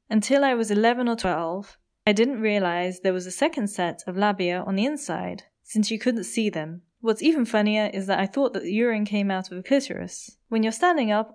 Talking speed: 225 wpm